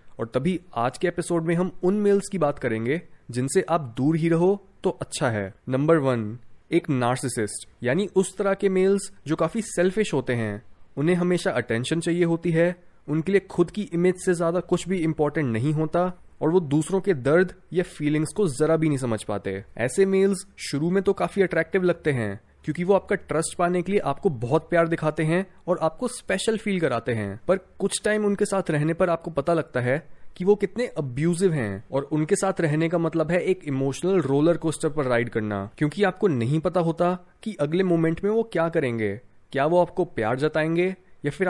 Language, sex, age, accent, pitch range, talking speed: Hindi, male, 20-39, native, 135-185 Hz, 205 wpm